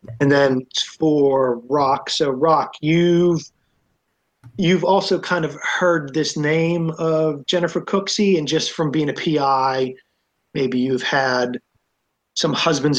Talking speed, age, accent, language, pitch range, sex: 130 wpm, 30-49, American, English, 125-150 Hz, male